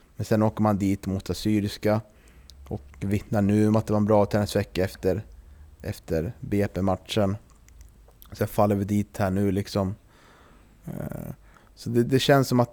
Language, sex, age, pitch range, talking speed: Swedish, male, 20-39, 95-120 Hz, 155 wpm